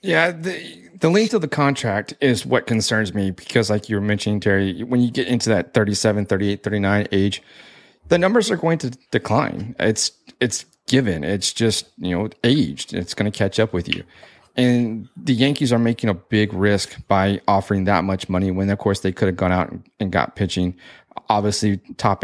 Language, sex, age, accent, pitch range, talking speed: English, male, 30-49, American, 95-115 Hz, 195 wpm